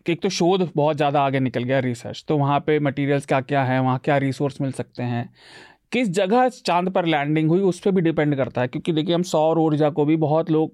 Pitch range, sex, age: 140-185 Hz, male, 30-49